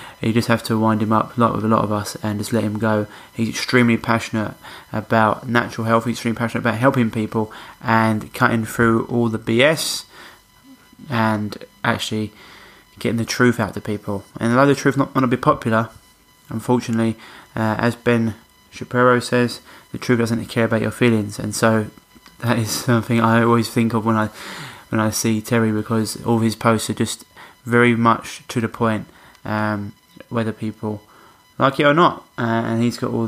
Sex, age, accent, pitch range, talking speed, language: male, 20-39, British, 110-120 Hz, 190 wpm, English